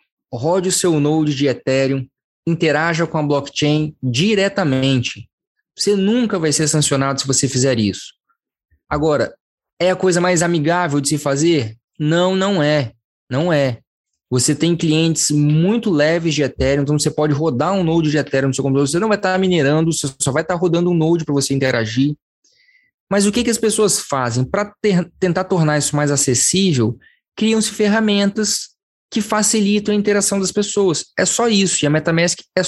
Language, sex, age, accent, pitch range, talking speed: Portuguese, male, 20-39, Brazilian, 145-195 Hz, 175 wpm